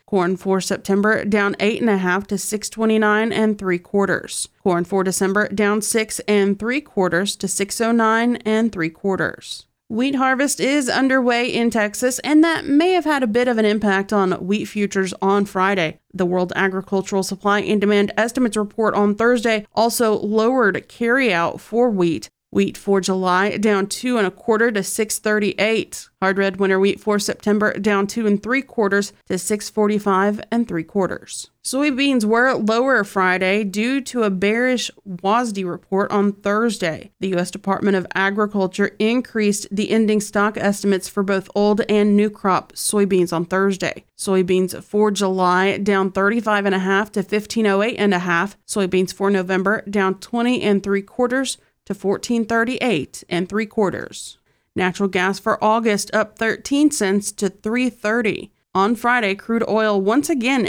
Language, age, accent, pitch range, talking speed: English, 30-49, American, 195-225 Hz, 160 wpm